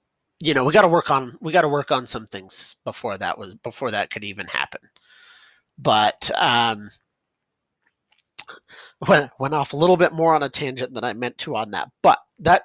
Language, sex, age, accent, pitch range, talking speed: English, male, 30-49, American, 125-175 Hz, 200 wpm